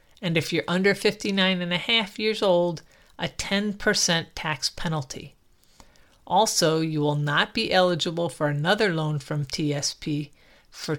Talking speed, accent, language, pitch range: 140 wpm, American, English, 150-200 Hz